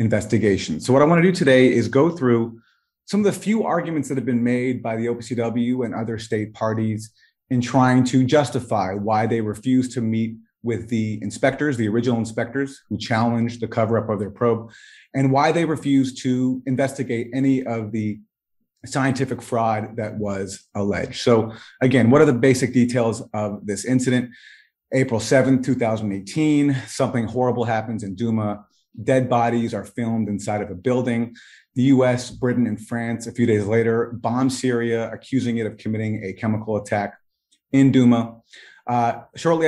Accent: American